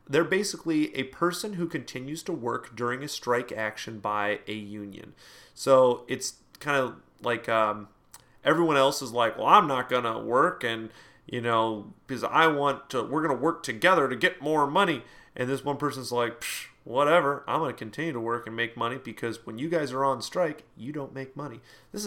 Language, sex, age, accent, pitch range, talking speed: English, male, 30-49, American, 120-155 Hz, 200 wpm